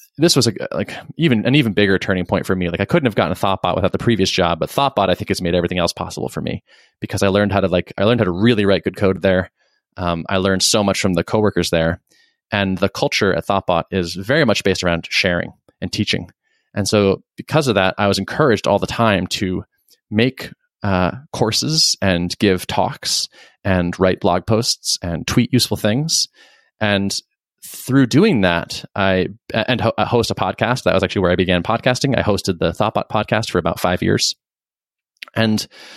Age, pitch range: 20-39, 90-110 Hz